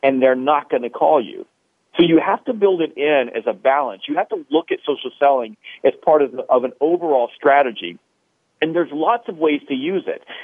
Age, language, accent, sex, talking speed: 40-59, English, American, male, 230 wpm